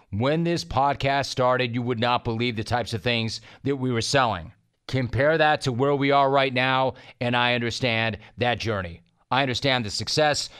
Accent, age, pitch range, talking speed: American, 40-59, 115-145 Hz, 185 wpm